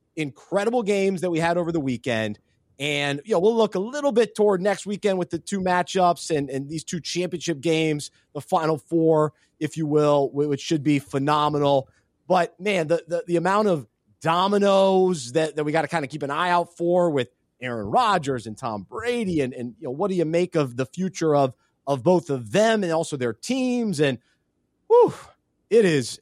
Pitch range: 150-210 Hz